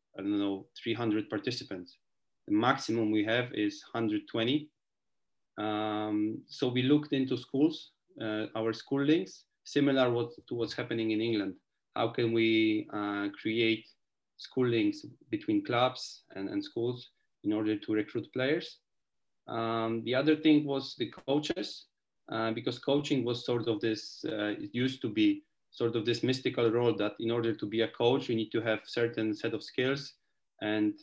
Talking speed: 160 wpm